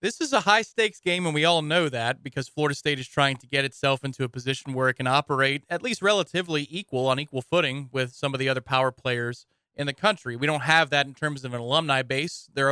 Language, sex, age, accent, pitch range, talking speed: English, male, 30-49, American, 130-180 Hz, 250 wpm